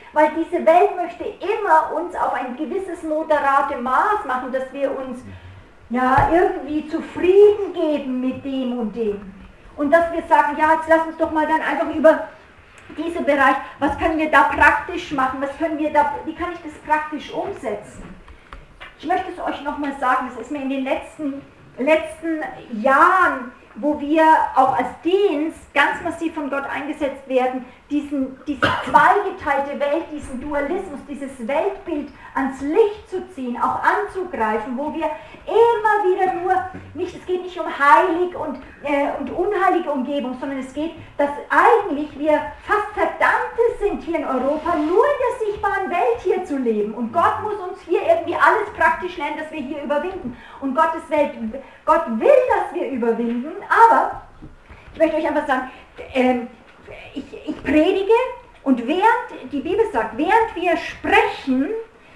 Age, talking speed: 50-69, 155 wpm